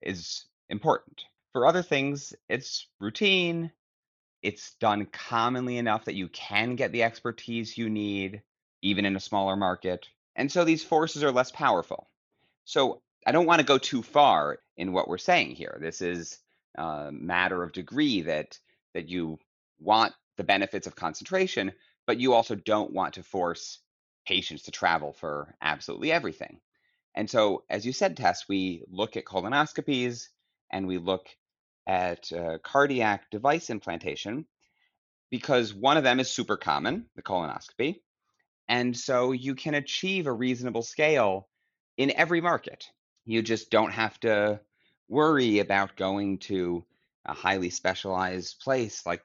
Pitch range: 95-135 Hz